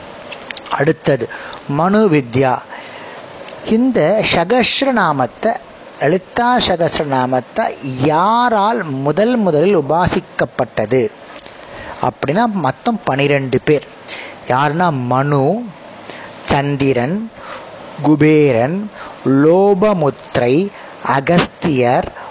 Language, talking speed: Tamil, 55 wpm